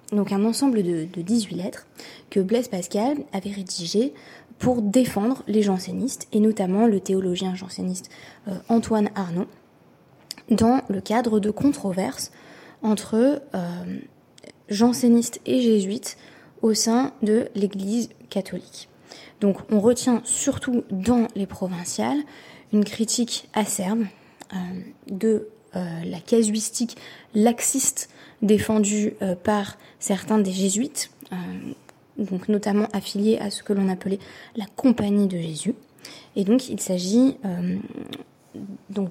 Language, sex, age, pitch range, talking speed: French, female, 20-39, 195-235 Hz, 115 wpm